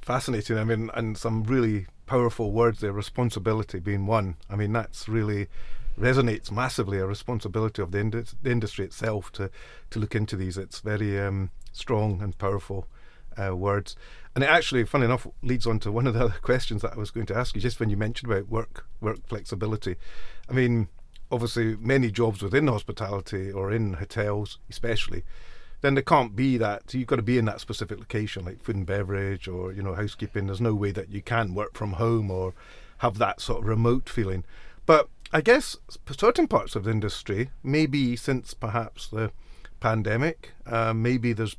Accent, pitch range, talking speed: British, 100-120 Hz, 190 wpm